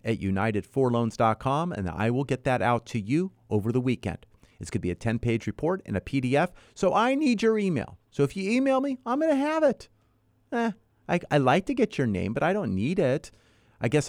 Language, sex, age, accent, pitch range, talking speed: English, male, 40-59, American, 115-185 Hz, 220 wpm